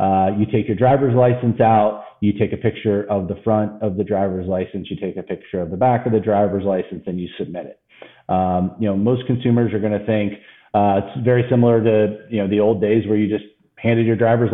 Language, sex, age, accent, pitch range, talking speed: English, male, 40-59, American, 100-120 Hz, 240 wpm